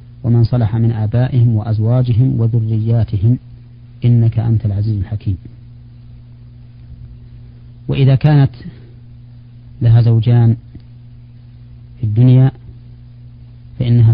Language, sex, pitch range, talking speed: Arabic, male, 115-120 Hz, 70 wpm